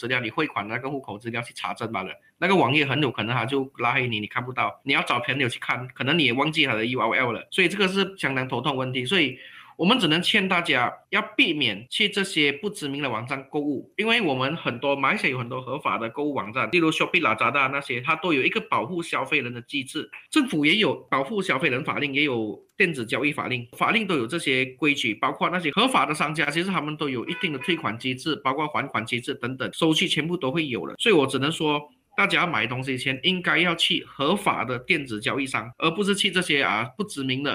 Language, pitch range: Chinese, 130-175 Hz